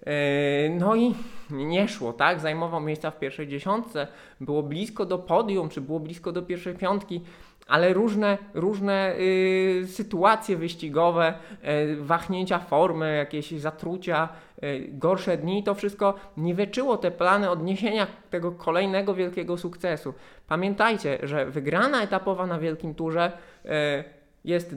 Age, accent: 20-39, native